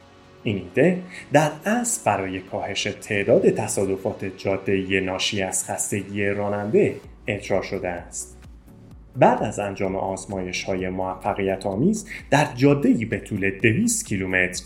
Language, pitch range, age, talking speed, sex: Persian, 95-120 Hz, 30-49, 110 wpm, male